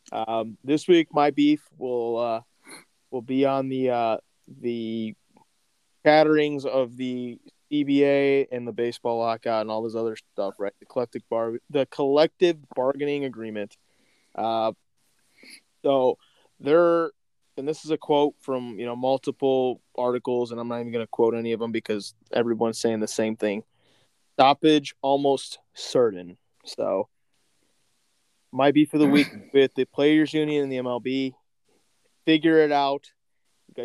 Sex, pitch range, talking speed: male, 120-160 Hz, 145 wpm